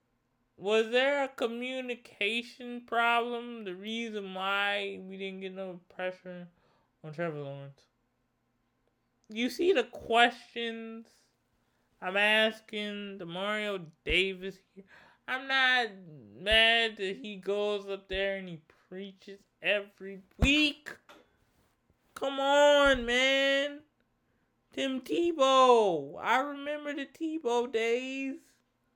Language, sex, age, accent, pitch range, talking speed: English, male, 20-39, American, 180-245 Hz, 100 wpm